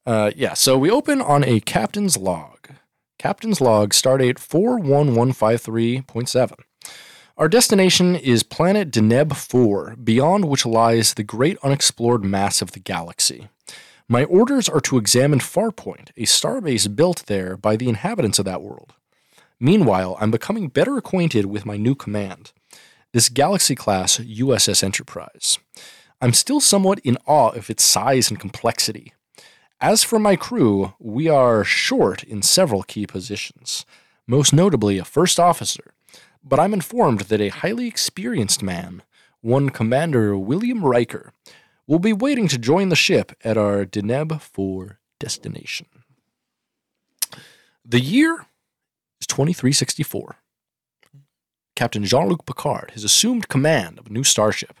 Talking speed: 135 wpm